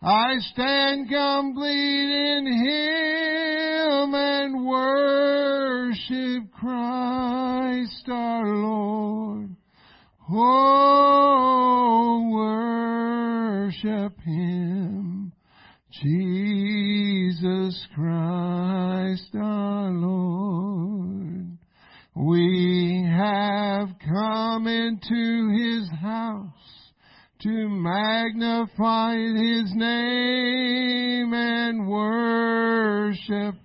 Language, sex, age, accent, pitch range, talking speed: English, male, 50-69, American, 205-250 Hz, 50 wpm